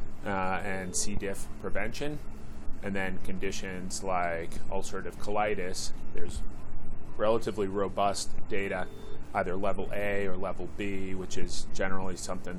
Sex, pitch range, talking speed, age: male, 85-100 Hz, 120 wpm, 30-49